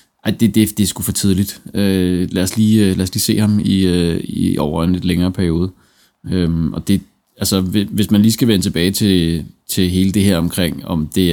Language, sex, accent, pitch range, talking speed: Danish, male, native, 95-110 Hz, 225 wpm